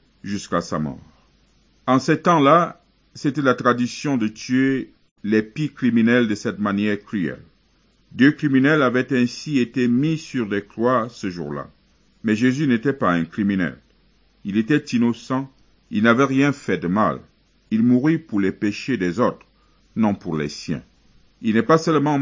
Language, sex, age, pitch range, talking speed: Arabic, male, 50-69, 100-135 Hz, 160 wpm